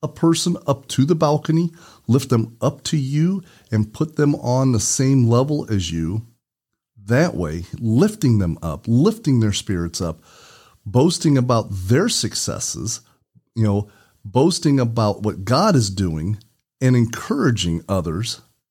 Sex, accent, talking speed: male, American, 140 wpm